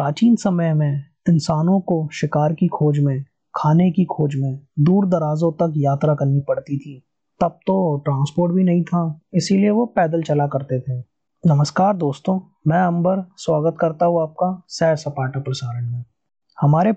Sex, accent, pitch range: male, native, 150-185 Hz